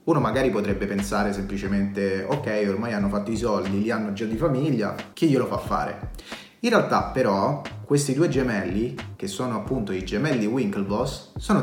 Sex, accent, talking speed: male, native, 170 wpm